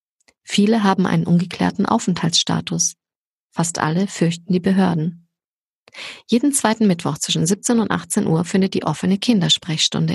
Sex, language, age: female, German, 30-49